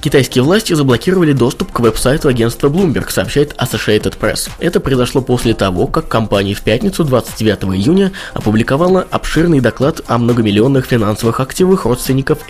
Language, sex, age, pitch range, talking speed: Russian, male, 20-39, 110-145 Hz, 140 wpm